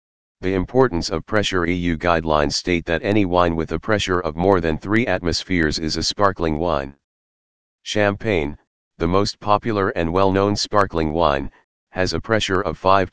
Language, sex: English, male